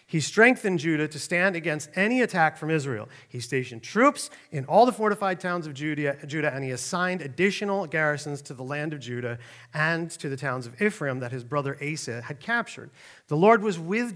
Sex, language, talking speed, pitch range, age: male, English, 200 wpm, 135-175 Hz, 40-59